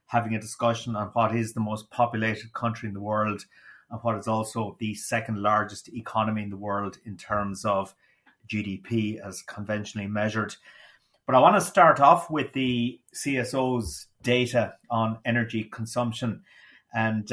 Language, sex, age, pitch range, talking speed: English, male, 30-49, 110-125 Hz, 155 wpm